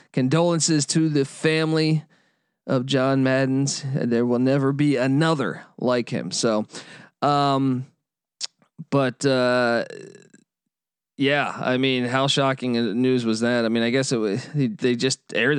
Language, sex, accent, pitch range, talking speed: English, male, American, 130-170 Hz, 140 wpm